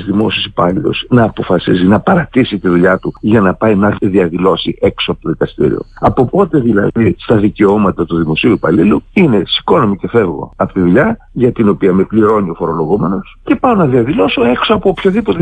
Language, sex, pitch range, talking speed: Greek, male, 100-165 Hz, 185 wpm